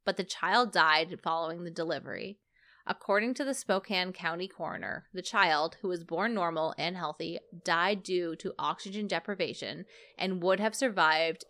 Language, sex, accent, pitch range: English, female, American, 175-215 Hz